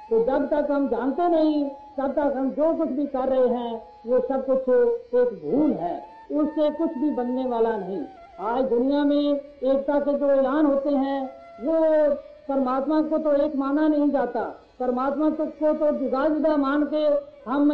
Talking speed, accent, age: 185 wpm, native, 50-69